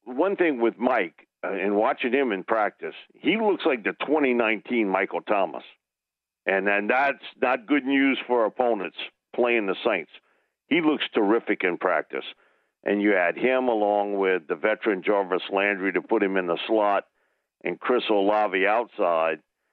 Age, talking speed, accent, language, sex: 60-79, 160 wpm, American, English, male